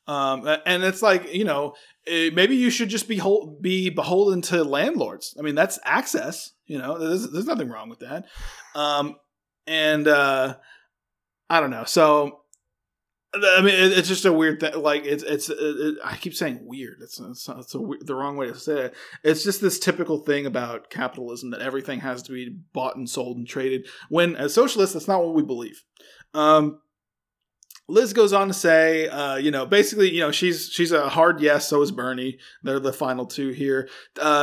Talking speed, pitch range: 200 wpm, 140-180 Hz